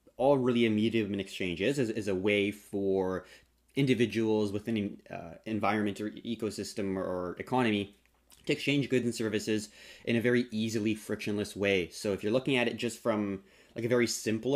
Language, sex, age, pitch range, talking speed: English, male, 20-39, 100-115 Hz, 175 wpm